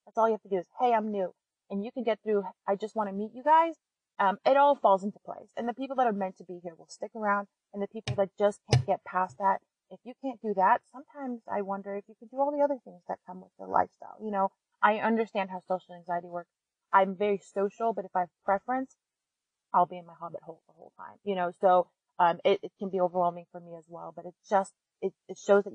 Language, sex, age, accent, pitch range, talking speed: English, female, 30-49, American, 180-220 Hz, 270 wpm